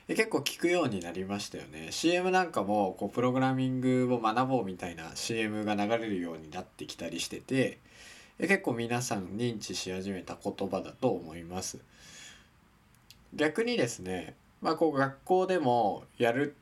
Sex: male